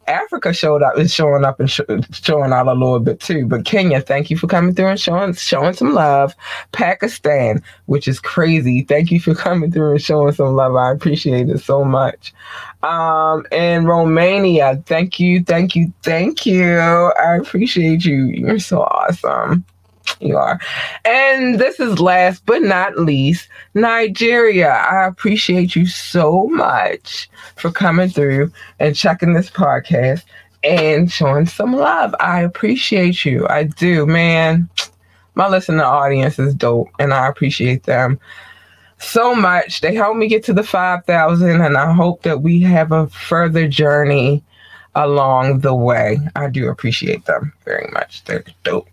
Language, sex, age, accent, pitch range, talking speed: English, female, 20-39, American, 140-180 Hz, 155 wpm